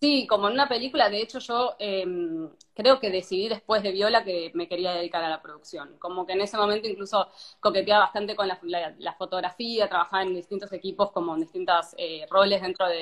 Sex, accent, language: female, Argentinian, Spanish